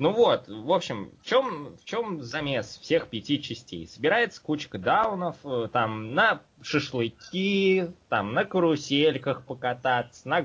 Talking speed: 130 wpm